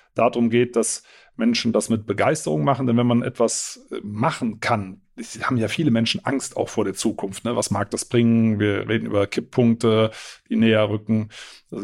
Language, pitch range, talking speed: German, 110-135 Hz, 190 wpm